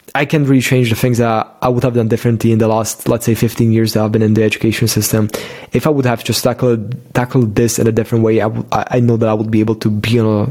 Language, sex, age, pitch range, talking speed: English, male, 20-39, 110-125 Hz, 290 wpm